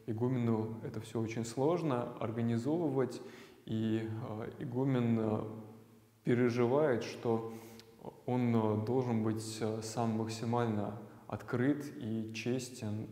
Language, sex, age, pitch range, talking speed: Russian, male, 20-39, 110-120 Hz, 80 wpm